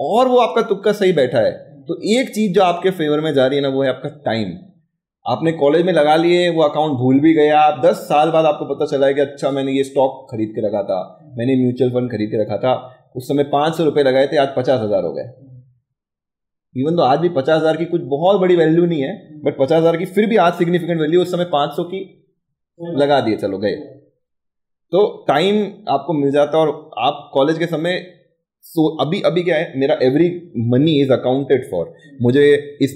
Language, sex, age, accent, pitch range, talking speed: Hindi, male, 30-49, native, 130-170 Hz, 120 wpm